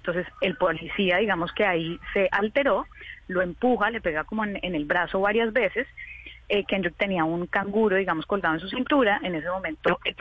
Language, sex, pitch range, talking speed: Spanish, female, 170-220 Hz, 195 wpm